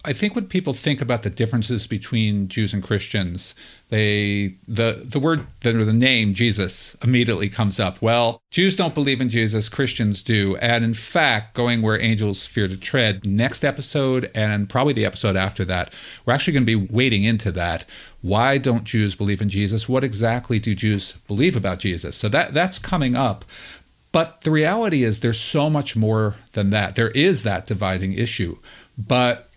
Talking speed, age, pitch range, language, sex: 185 wpm, 50-69, 105-135 Hz, English, male